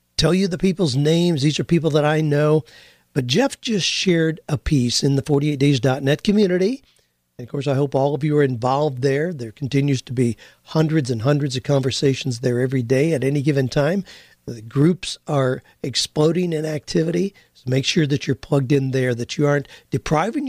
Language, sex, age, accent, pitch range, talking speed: English, male, 50-69, American, 130-160 Hz, 195 wpm